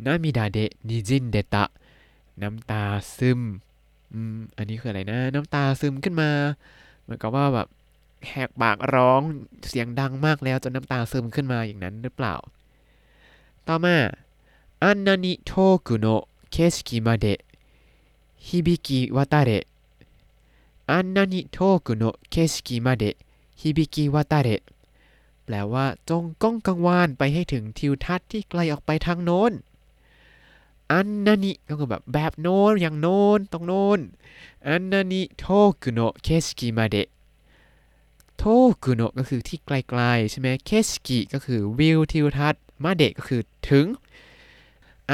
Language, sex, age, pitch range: Thai, male, 20-39, 120-170 Hz